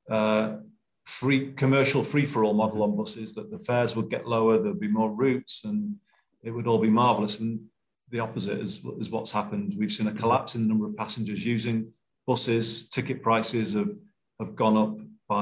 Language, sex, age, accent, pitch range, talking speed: English, male, 40-59, British, 110-130 Hz, 190 wpm